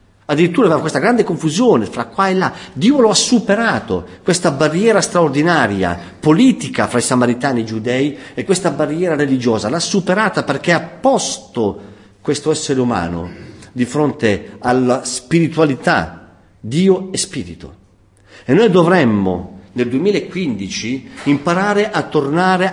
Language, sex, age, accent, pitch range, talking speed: Italian, male, 50-69, native, 110-165 Hz, 130 wpm